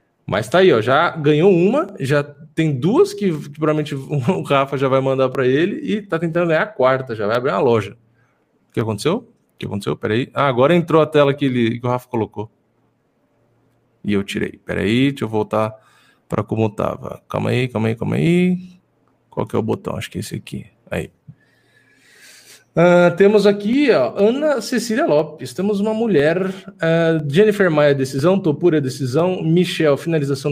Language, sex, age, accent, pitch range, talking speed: Portuguese, male, 20-39, Brazilian, 135-185 Hz, 185 wpm